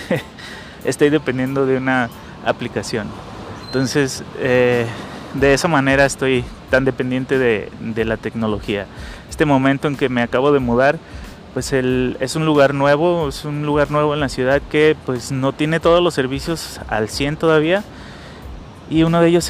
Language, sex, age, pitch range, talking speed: Spanish, male, 30-49, 125-145 Hz, 160 wpm